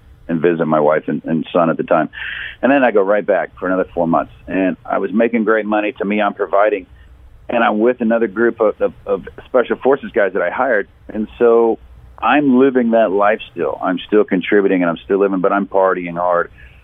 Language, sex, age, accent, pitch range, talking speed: English, male, 50-69, American, 90-115 Hz, 215 wpm